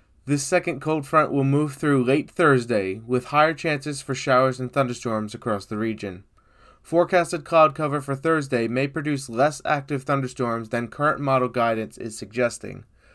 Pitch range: 120-155 Hz